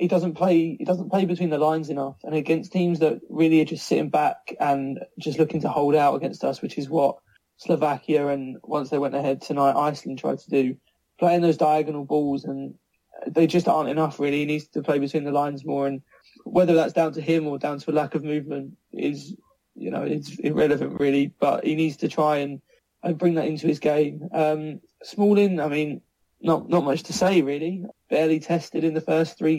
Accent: British